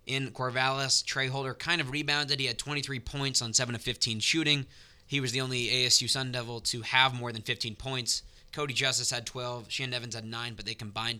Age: 20-39